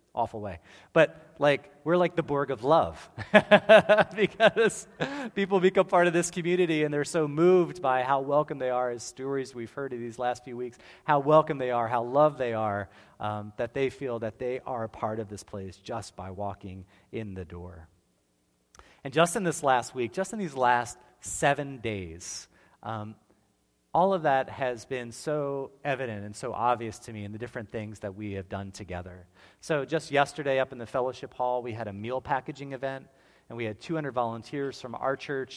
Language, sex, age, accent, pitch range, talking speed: English, male, 30-49, American, 110-140 Hz, 195 wpm